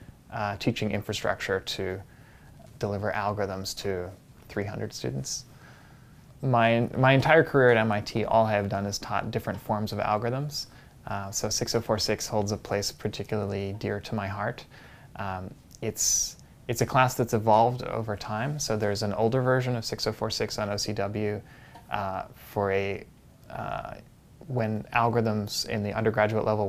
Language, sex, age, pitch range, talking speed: English, male, 20-39, 100-120 Hz, 145 wpm